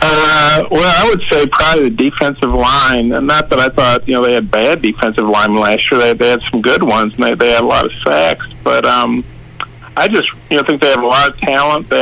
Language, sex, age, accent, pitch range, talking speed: English, male, 50-69, American, 120-140 Hz, 255 wpm